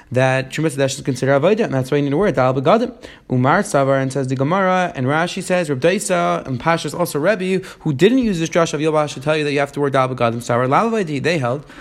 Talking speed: 265 wpm